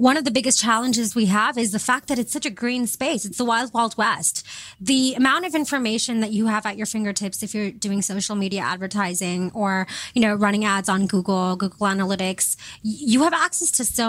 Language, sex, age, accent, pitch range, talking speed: English, female, 20-39, American, 200-250 Hz, 215 wpm